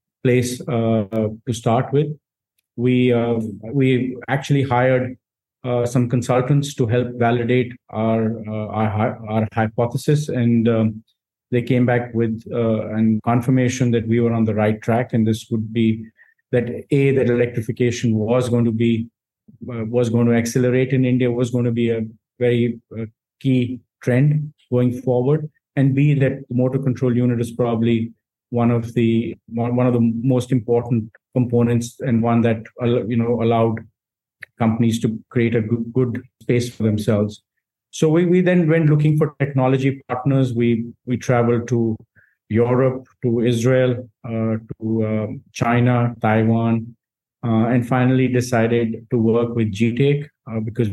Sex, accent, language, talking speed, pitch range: male, Indian, English, 155 wpm, 115-125 Hz